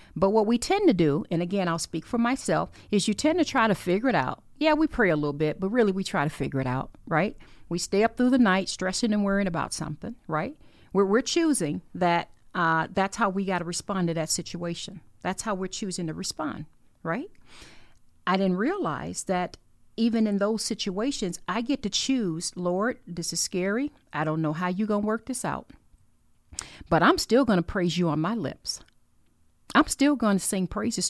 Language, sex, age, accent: English, female, 40-59, American